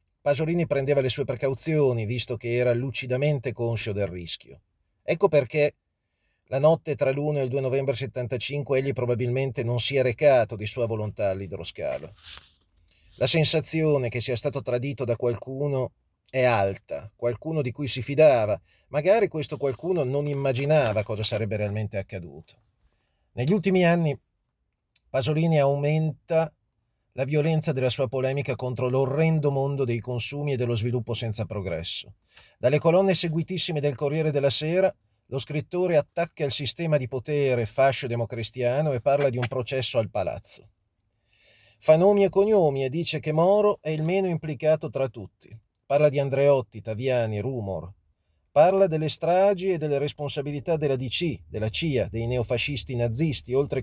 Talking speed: 145 wpm